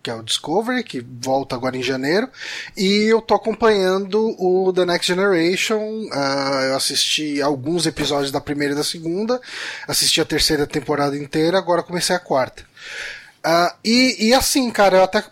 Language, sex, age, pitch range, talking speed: Portuguese, male, 20-39, 150-210 Hz, 160 wpm